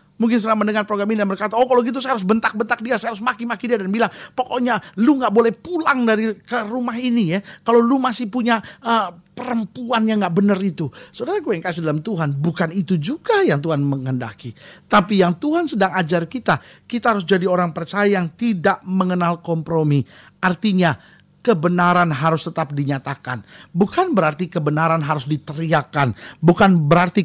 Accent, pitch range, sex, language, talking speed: native, 155-210 Hz, male, Indonesian, 170 wpm